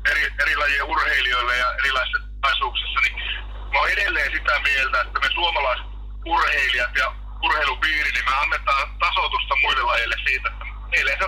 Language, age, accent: Finnish, 30-49, native